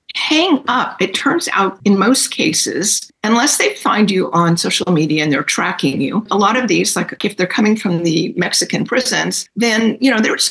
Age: 60-79